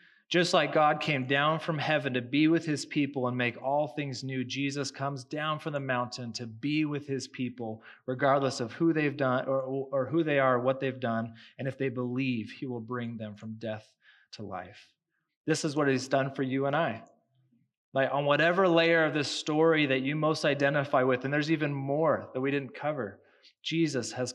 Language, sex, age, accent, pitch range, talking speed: English, male, 30-49, American, 125-150 Hz, 205 wpm